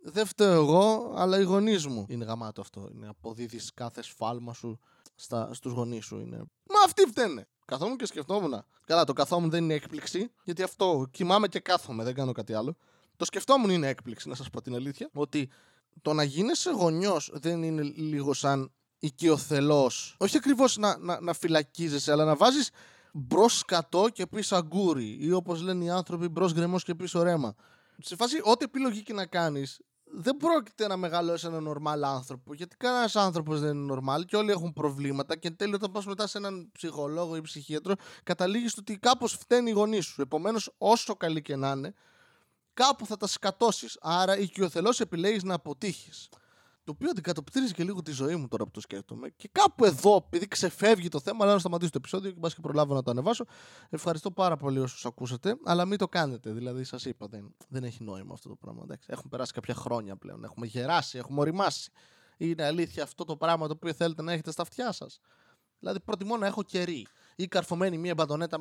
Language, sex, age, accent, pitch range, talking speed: Greek, male, 20-39, native, 140-195 Hz, 195 wpm